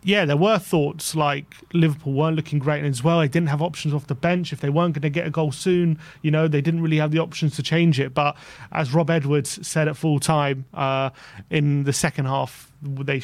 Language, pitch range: English, 135-155 Hz